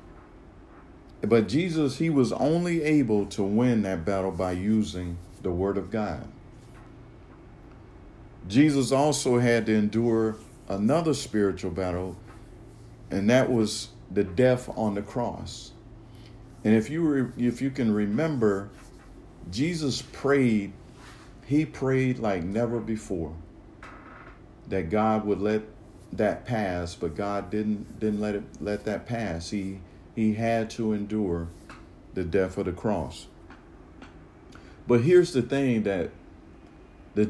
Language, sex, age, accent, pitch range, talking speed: English, male, 50-69, American, 95-120 Hz, 125 wpm